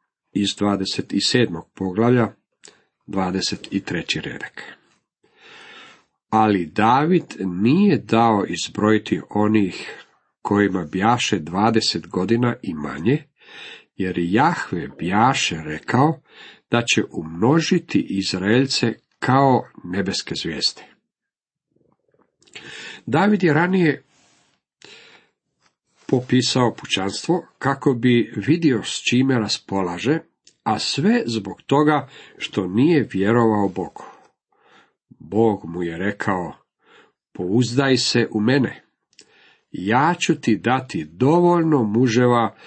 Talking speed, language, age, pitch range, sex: 85 wpm, Croatian, 50-69, 95-135 Hz, male